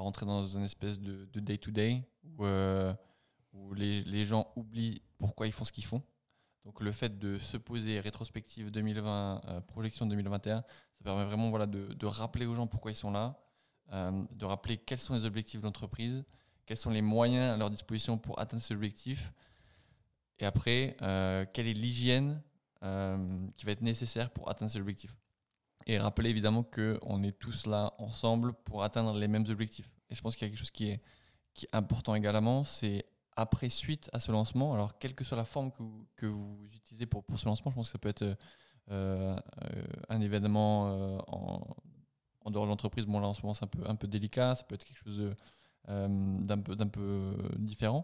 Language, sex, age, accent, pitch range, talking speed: French, male, 20-39, French, 100-120 Hz, 205 wpm